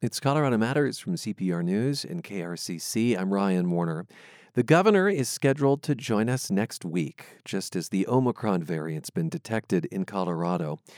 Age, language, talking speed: 40-59, English, 160 wpm